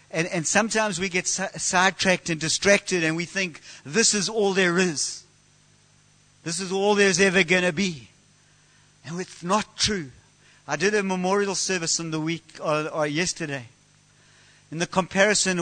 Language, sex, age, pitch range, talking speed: English, male, 50-69, 140-170 Hz, 160 wpm